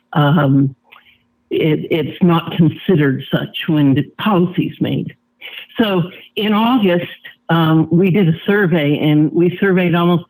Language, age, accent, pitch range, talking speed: English, 60-79, American, 150-180 Hz, 130 wpm